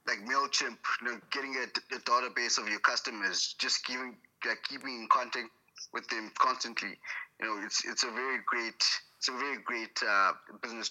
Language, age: English, 20-39